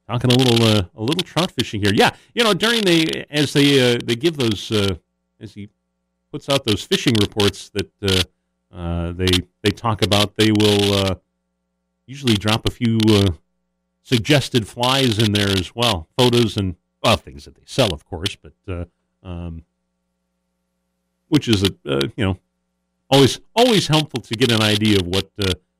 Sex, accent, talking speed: male, American, 180 wpm